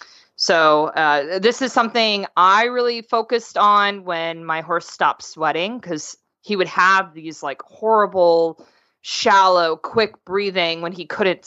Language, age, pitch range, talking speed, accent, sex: English, 20-39, 160-200 Hz, 140 wpm, American, female